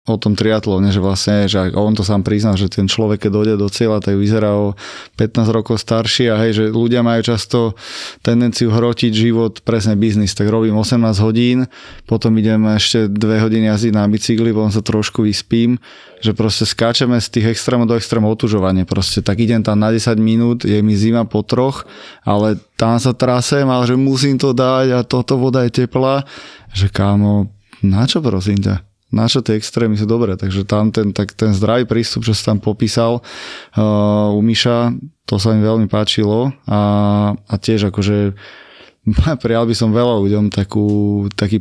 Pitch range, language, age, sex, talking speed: 105-115 Hz, Slovak, 20-39, male, 175 wpm